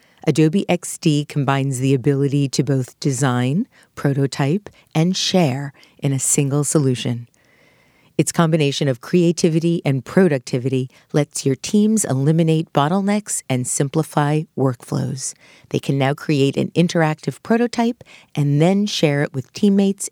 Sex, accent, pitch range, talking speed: female, American, 135-160 Hz, 125 wpm